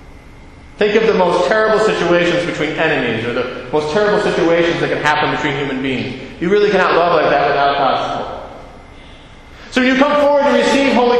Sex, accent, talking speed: male, American, 195 wpm